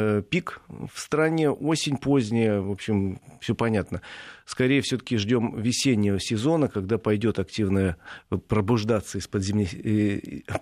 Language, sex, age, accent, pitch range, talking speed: Russian, male, 40-59, native, 110-140 Hz, 115 wpm